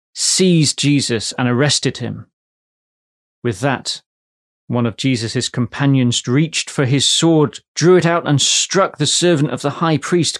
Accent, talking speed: British, 150 wpm